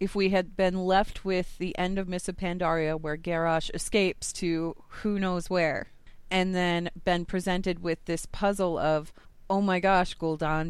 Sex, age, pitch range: female, 30-49, 160-195 Hz